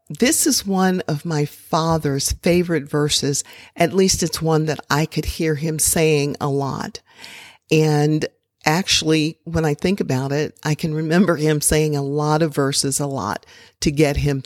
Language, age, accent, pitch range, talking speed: English, 50-69, American, 150-190 Hz, 170 wpm